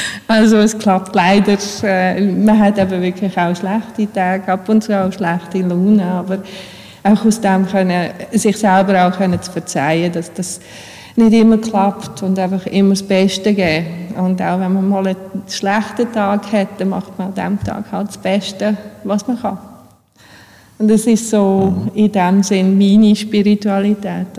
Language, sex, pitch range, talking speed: German, female, 190-220 Hz, 165 wpm